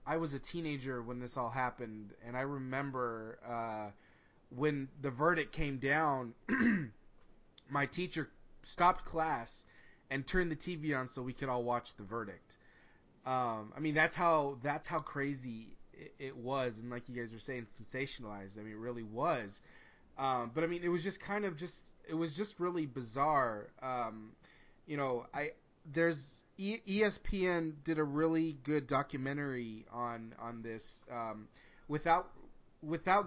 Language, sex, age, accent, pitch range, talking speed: English, male, 20-39, American, 120-160 Hz, 160 wpm